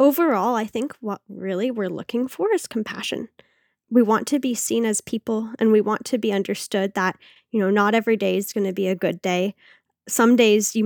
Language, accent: English, American